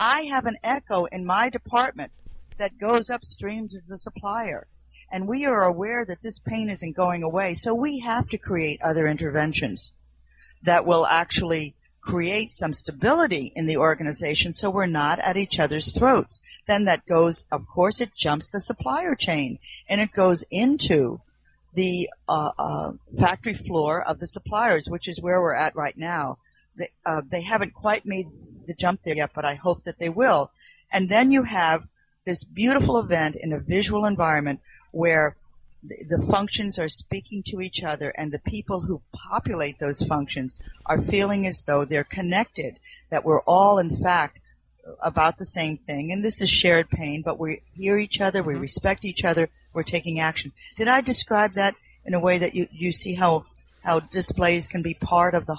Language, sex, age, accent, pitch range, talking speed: English, female, 50-69, American, 155-200 Hz, 180 wpm